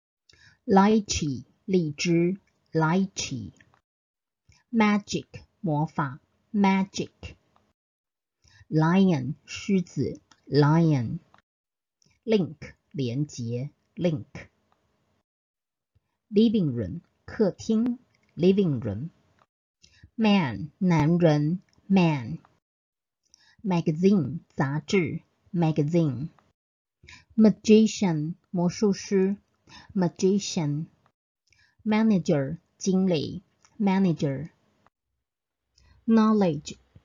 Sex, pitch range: female, 150-200 Hz